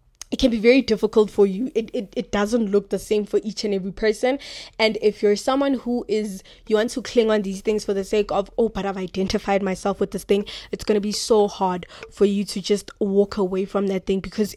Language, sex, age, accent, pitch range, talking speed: English, female, 20-39, South African, 200-225 Hz, 245 wpm